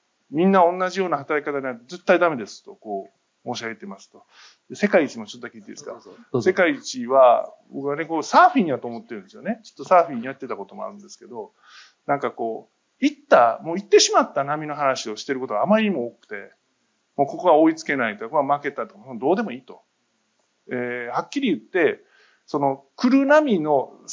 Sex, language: male, Japanese